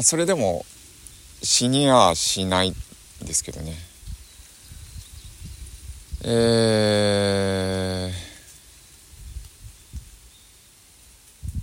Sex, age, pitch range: male, 50-69, 85-105 Hz